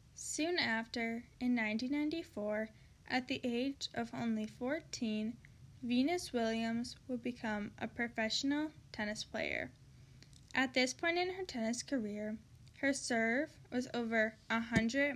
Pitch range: 215-265 Hz